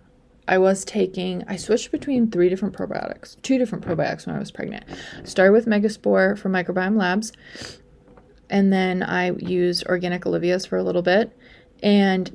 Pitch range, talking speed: 180-210 Hz, 160 wpm